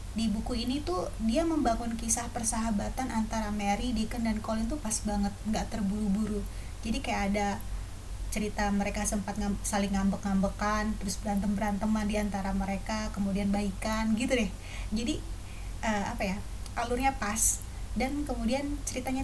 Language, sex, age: Indonesian, female, 20-39